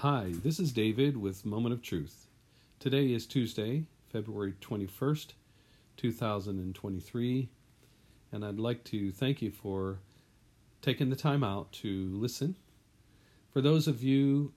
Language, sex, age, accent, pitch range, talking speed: English, male, 50-69, American, 100-125 Hz, 130 wpm